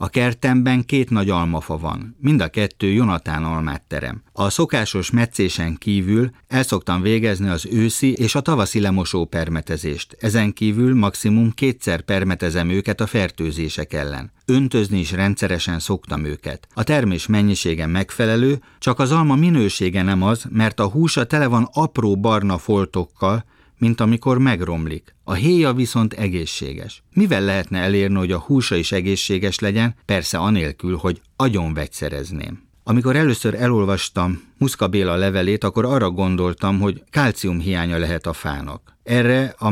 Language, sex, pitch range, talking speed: Hungarian, male, 90-115 Hz, 140 wpm